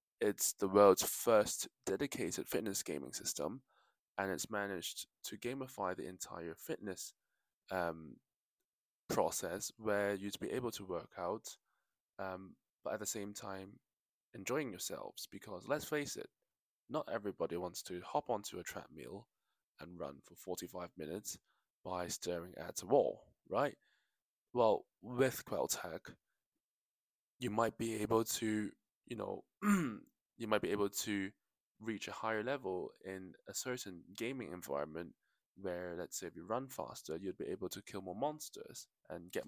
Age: 20-39